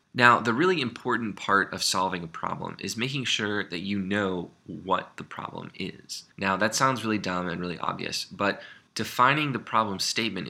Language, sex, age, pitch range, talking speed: English, male, 20-39, 90-110 Hz, 185 wpm